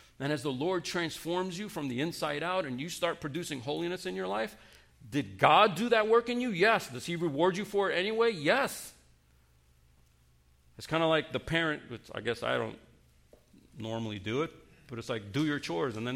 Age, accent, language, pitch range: 40-59, American, English, 110-170 Hz